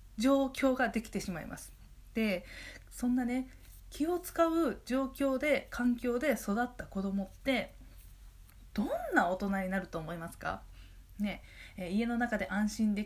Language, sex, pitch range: Japanese, female, 195-270 Hz